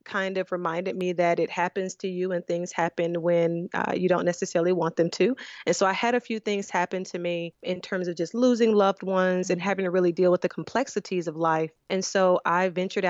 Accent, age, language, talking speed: American, 30-49, English, 235 wpm